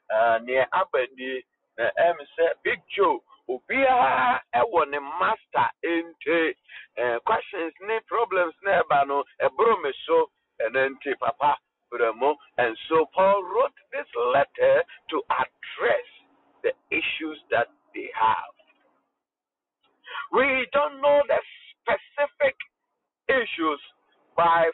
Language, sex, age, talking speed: English, male, 60-79, 60 wpm